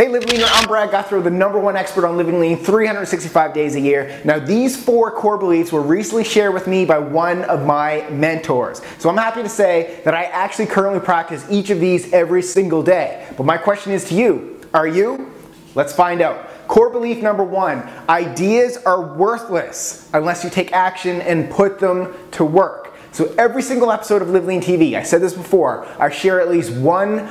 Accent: American